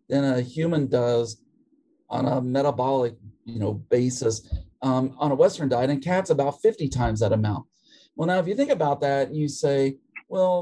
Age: 40-59